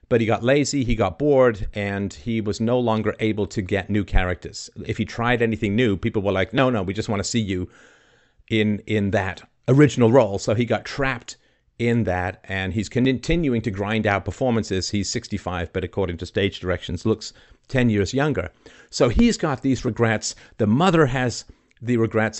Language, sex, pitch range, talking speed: English, male, 95-120 Hz, 195 wpm